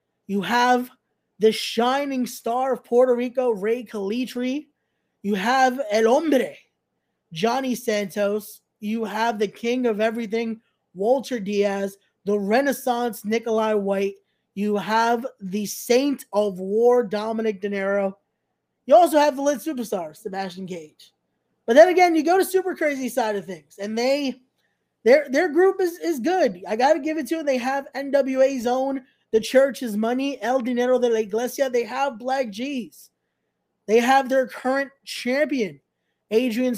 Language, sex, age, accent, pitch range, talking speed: English, male, 20-39, American, 210-260 Hz, 150 wpm